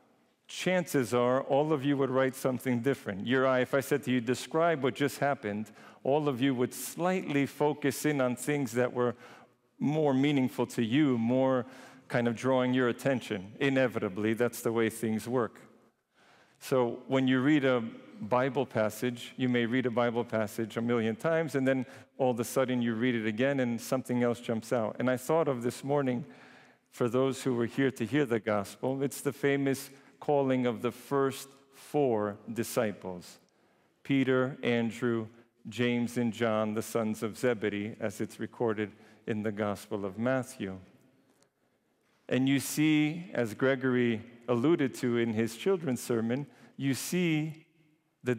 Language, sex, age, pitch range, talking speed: English, male, 50-69, 115-135 Hz, 165 wpm